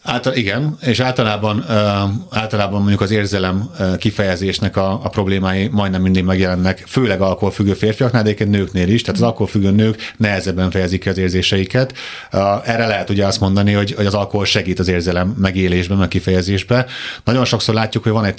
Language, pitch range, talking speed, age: Hungarian, 95-115 Hz, 165 wpm, 30-49